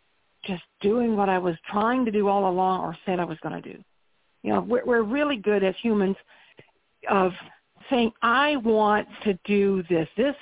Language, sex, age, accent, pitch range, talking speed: English, female, 60-79, American, 195-230 Hz, 190 wpm